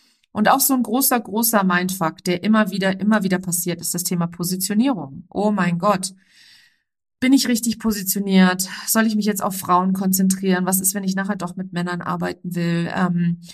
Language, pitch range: German, 170-205 Hz